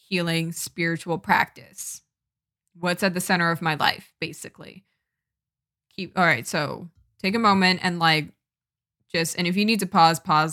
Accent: American